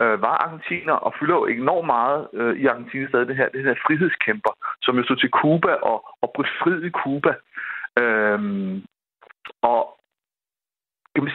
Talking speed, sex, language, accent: 160 wpm, male, Danish, native